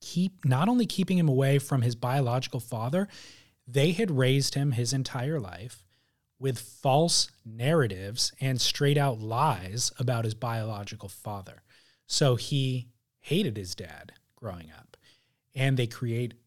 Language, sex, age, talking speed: English, male, 30-49, 135 wpm